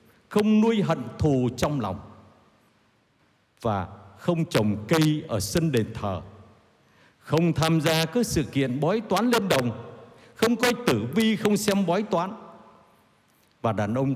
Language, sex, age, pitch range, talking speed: Vietnamese, male, 60-79, 115-160 Hz, 150 wpm